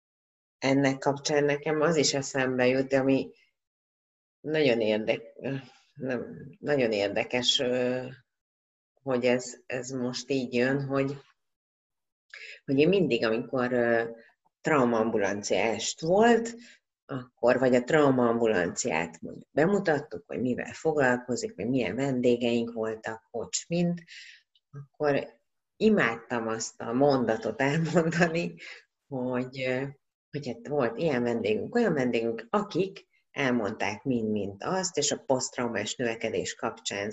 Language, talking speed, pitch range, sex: Hungarian, 105 wpm, 115-145 Hz, female